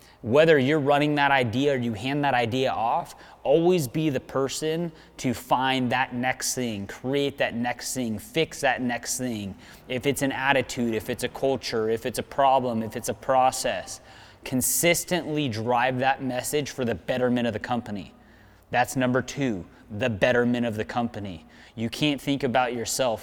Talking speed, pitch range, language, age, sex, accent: 175 wpm, 120-145 Hz, English, 30-49, male, American